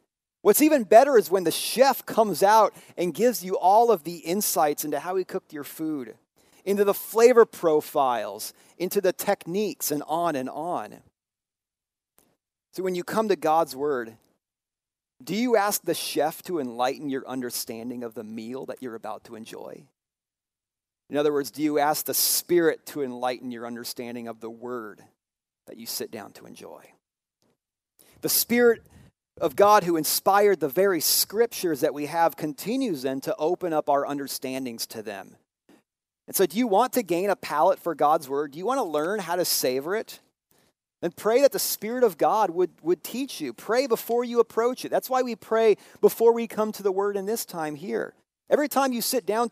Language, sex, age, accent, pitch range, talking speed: English, male, 40-59, American, 145-225 Hz, 190 wpm